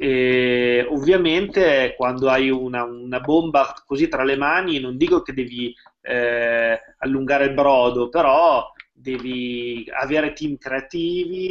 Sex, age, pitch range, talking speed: male, 20-39, 125-145 Hz, 125 wpm